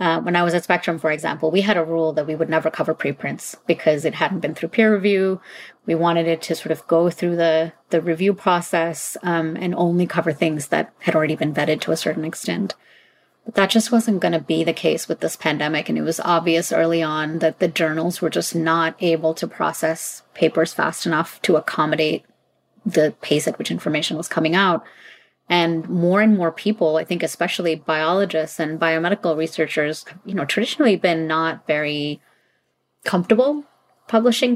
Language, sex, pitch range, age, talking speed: English, female, 160-190 Hz, 30-49, 195 wpm